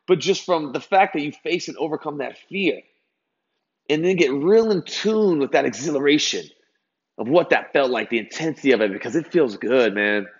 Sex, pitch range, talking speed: male, 120-160 Hz, 200 wpm